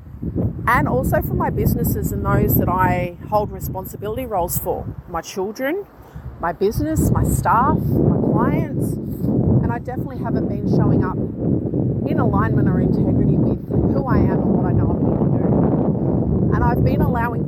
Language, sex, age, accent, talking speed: English, female, 30-49, Australian, 165 wpm